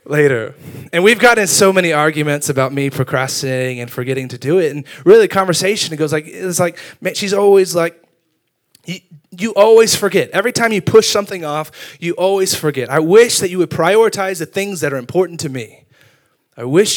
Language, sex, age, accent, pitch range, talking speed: English, male, 20-39, American, 130-165 Hz, 200 wpm